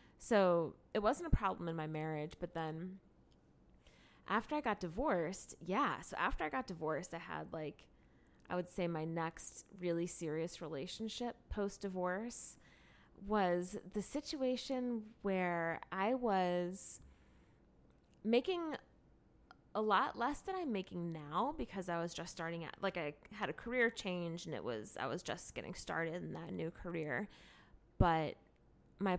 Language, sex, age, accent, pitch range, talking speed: English, female, 20-39, American, 155-215 Hz, 150 wpm